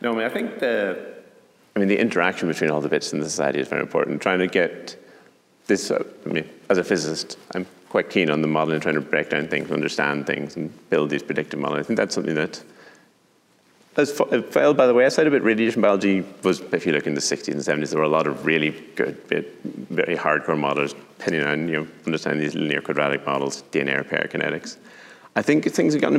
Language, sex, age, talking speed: English, male, 30-49, 230 wpm